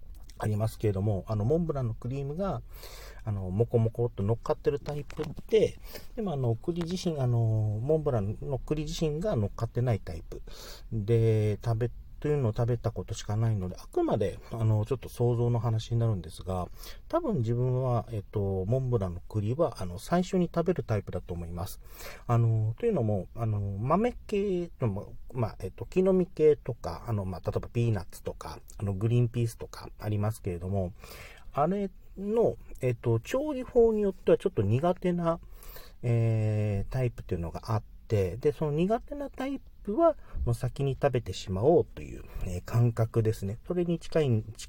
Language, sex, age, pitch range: Japanese, male, 40-59, 95-140 Hz